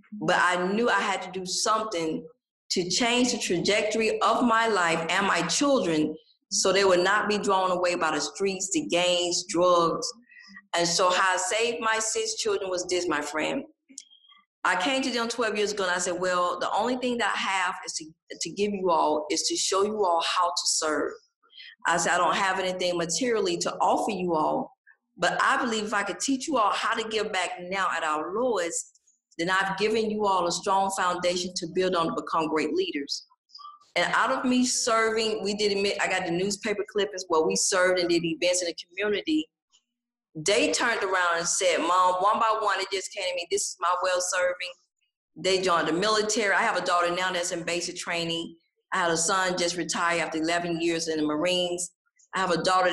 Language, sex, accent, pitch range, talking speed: English, female, American, 175-225 Hz, 215 wpm